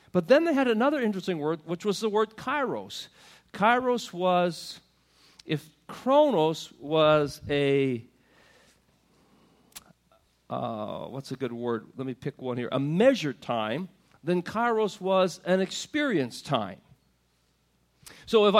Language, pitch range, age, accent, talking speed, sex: English, 150-215 Hz, 50-69, American, 125 wpm, male